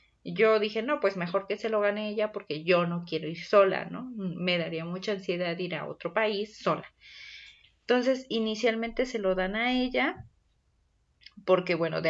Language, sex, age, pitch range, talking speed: Spanish, female, 30-49, 185-235 Hz, 180 wpm